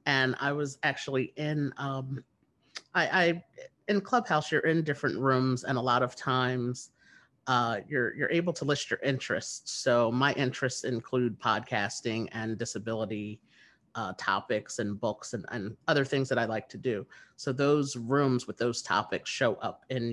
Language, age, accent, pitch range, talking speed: English, 30-49, American, 115-135 Hz, 165 wpm